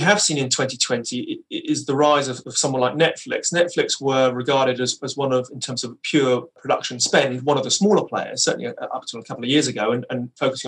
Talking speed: 230 wpm